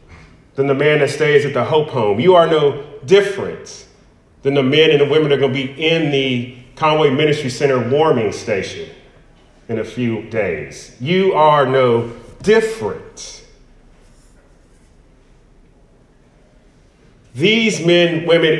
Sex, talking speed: male, 130 wpm